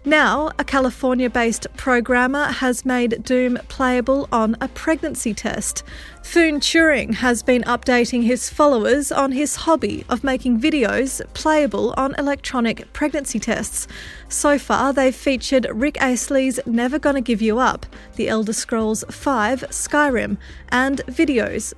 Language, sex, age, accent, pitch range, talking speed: English, female, 30-49, Australian, 245-285 Hz, 130 wpm